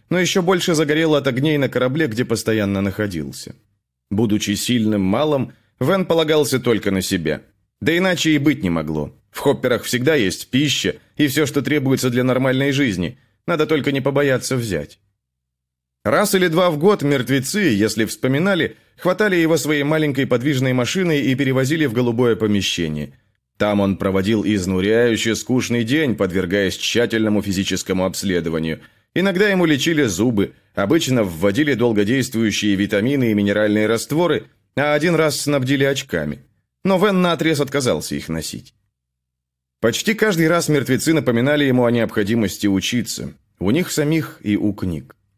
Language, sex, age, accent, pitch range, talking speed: Russian, male, 30-49, native, 100-150 Hz, 145 wpm